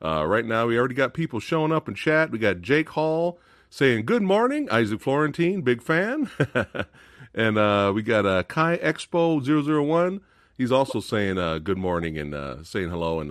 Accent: American